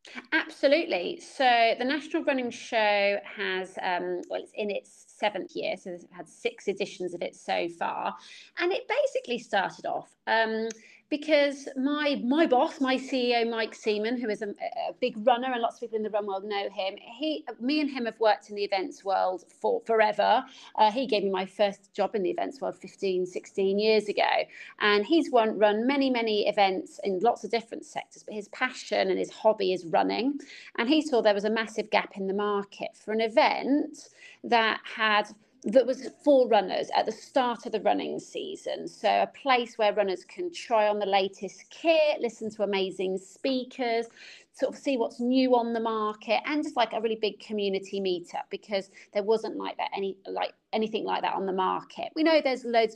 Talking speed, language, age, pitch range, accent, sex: 200 wpm, English, 30-49, 200-265 Hz, British, female